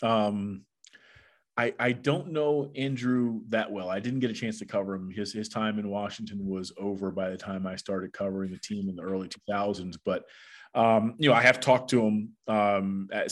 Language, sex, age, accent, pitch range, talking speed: English, male, 30-49, American, 100-120 Hz, 205 wpm